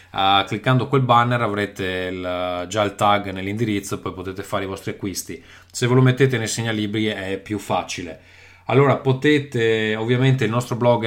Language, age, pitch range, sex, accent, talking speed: Italian, 30-49, 100-125 Hz, male, native, 175 wpm